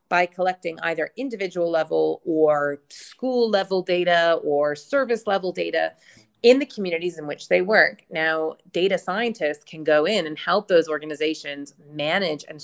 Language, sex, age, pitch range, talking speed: English, female, 30-49, 155-205 Hz, 150 wpm